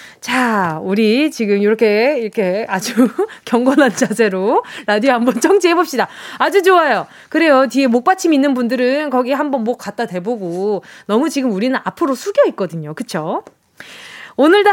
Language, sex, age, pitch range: Korean, female, 20-39, 230-355 Hz